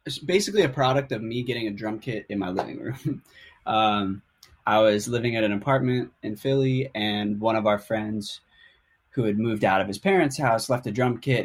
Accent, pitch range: American, 100-120 Hz